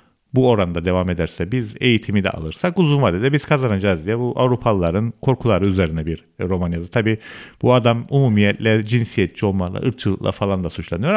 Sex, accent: male, native